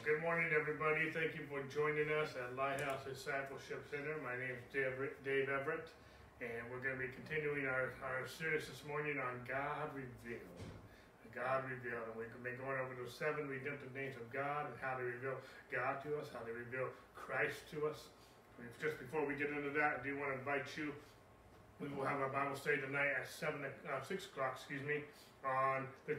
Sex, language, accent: male, English, American